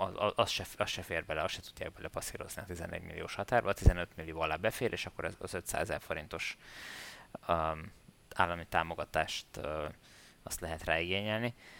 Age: 20-39